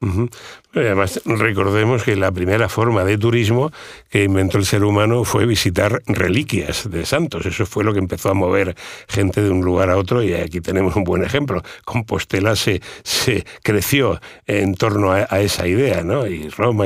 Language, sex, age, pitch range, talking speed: Spanish, male, 60-79, 95-115 Hz, 180 wpm